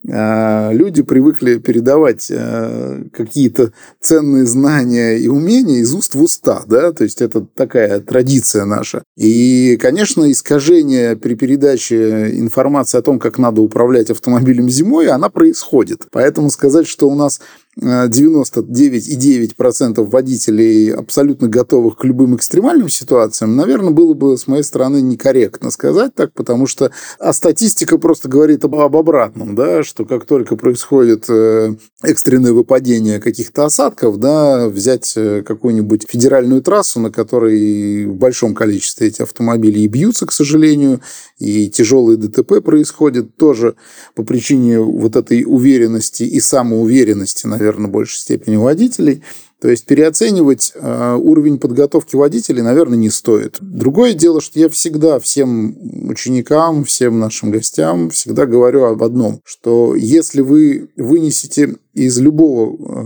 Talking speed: 130 wpm